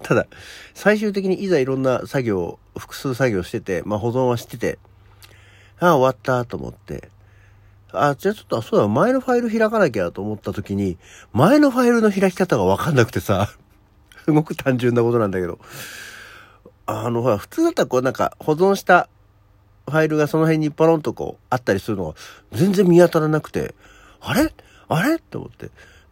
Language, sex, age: Japanese, male, 50-69